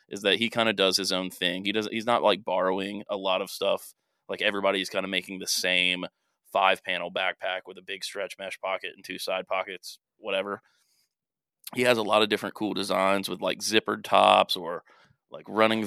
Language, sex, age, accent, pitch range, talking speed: English, male, 20-39, American, 95-105 Hz, 205 wpm